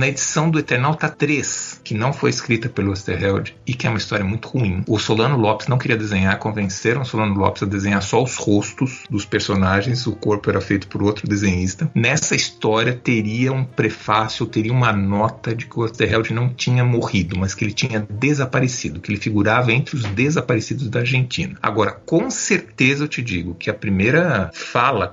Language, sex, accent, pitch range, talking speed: Portuguese, male, Brazilian, 100-130 Hz, 190 wpm